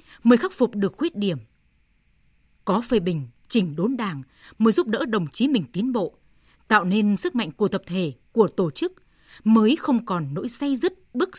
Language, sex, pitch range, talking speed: Vietnamese, female, 180-235 Hz, 195 wpm